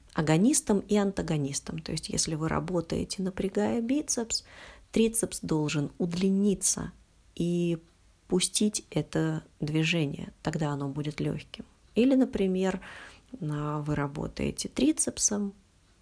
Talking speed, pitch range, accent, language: 95 wpm, 145-200 Hz, native, Russian